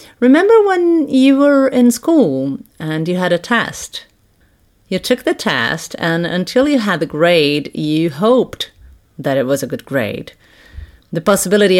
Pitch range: 140-195 Hz